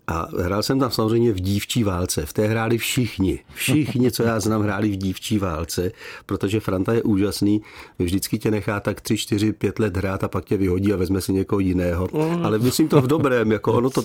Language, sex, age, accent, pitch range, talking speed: Czech, male, 50-69, native, 95-135 Hz, 215 wpm